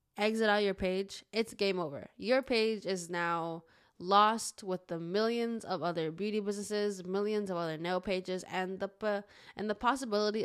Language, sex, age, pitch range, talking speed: English, female, 10-29, 180-210 Hz, 165 wpm